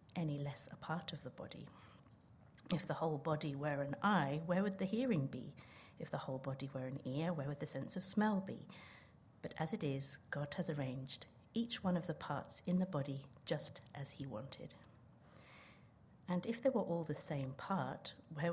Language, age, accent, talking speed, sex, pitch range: English, 50-69, British, 200 wpm, female, 140-175 Hz